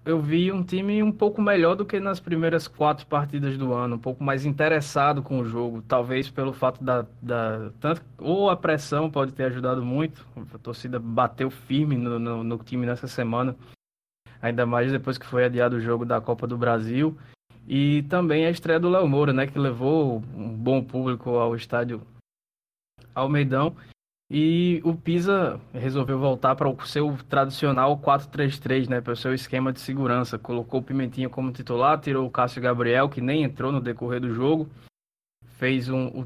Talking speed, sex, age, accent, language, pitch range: 175 wpm, male, 20-39, Brazilian, Portuguese, 125-145 Hz